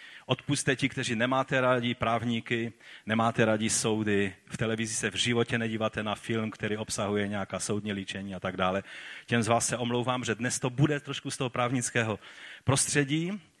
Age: 40-59